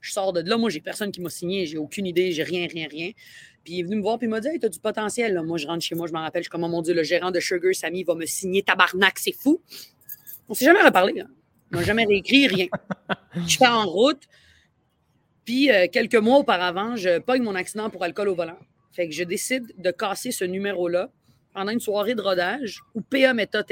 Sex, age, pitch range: female, 30-49, 175-215 Hz